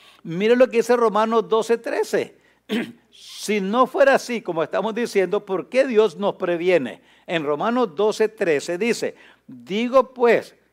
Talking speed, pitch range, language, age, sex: 145 wpm, 180-240 Hz, English, 60-79, male